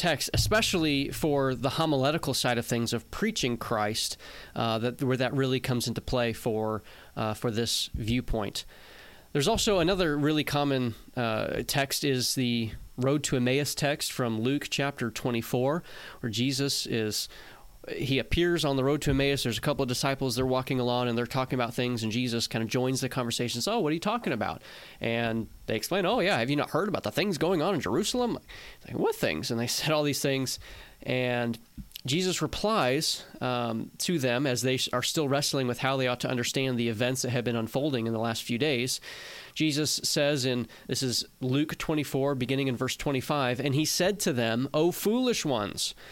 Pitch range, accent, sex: 120-155 Hz, American, male